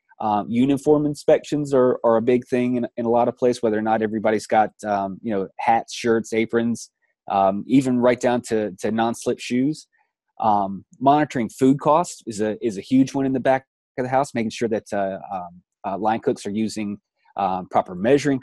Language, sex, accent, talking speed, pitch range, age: English, male, American, 205 wpm, 110-135 Hz, 30-49